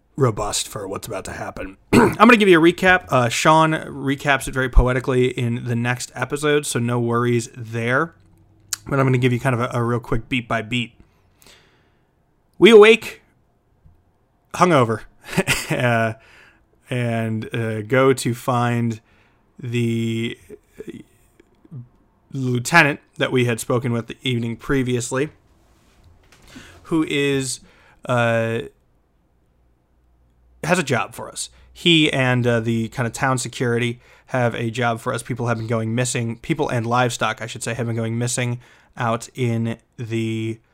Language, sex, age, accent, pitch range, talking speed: English, male, 30-49, American, 115-130 Hz, 145 wpm